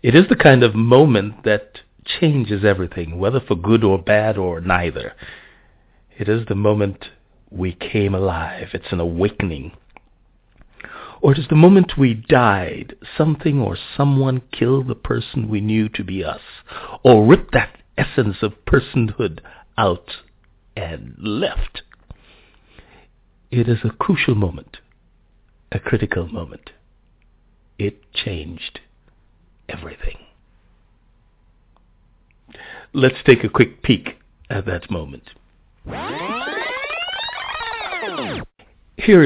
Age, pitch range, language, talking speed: 60-79, 95-130 Hz, English, 110 wpm